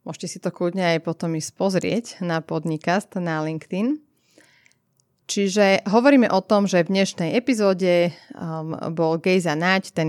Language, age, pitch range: Slovak, 30-49, 165-205 Hz